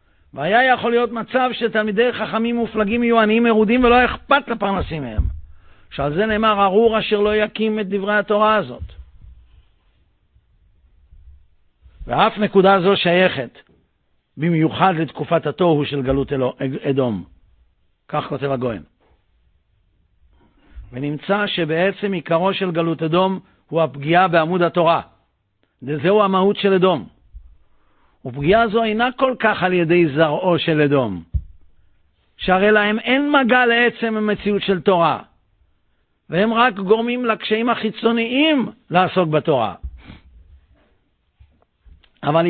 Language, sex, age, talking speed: Hebrew, male, 50-69, 115 wpm